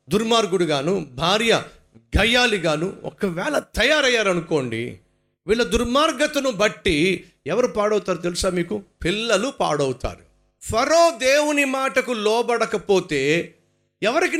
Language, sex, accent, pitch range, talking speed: Telugu, male, native, 155-255 Hz, 90 wpm